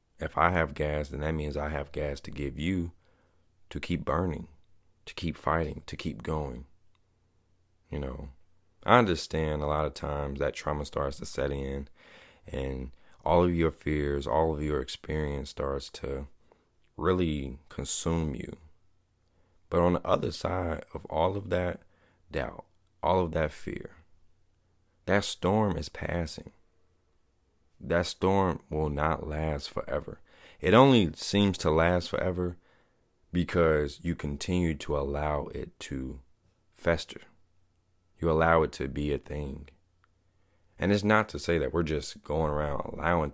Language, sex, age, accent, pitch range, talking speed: English, male, 30-49, American, 75-90 Hz, 145 wpm